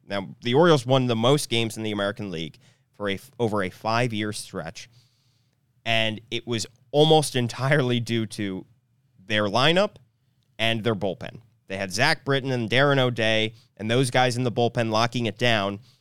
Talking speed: 165 wpm